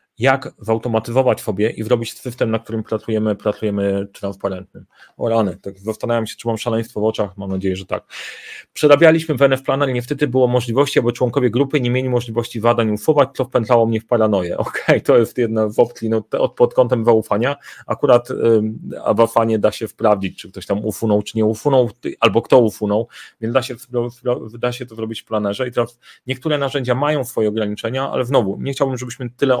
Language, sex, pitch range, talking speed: Polish, male, 110-130 Hz, 195 wpm